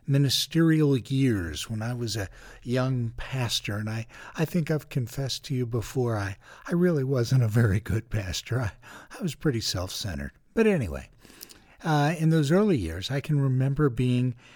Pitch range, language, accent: 115-145 Hz, English, American